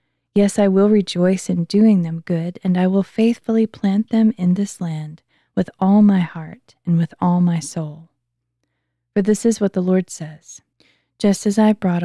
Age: 20-39